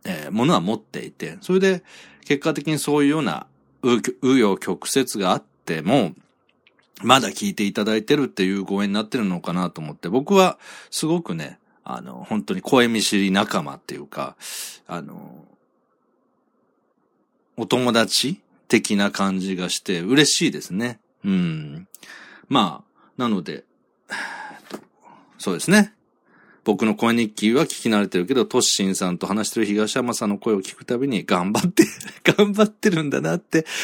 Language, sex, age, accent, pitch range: Japanese, male, 40-59, native, 100-165 Hz